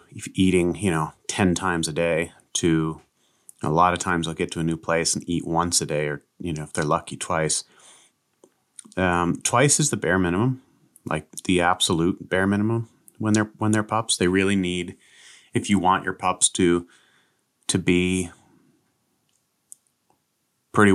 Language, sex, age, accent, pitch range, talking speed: English, male, 30-49, American, 80-95 Hz, 170 wpm